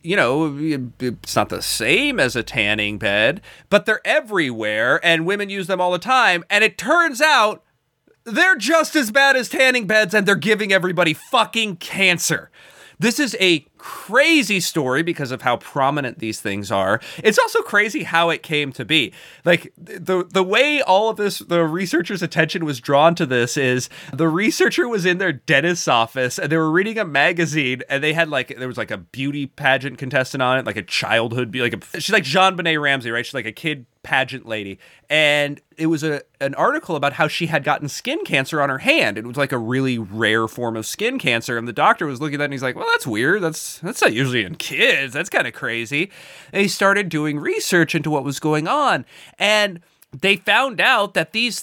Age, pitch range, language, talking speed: 30-49, 135-190 Hz, English, 210 wpm